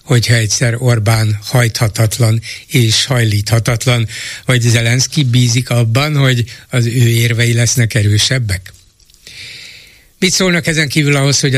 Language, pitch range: Hungarian, 115-135 Hz